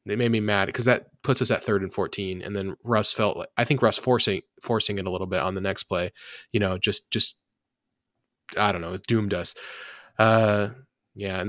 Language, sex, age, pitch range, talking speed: English, male, 20-39, 95-120 Hz, 225 wpm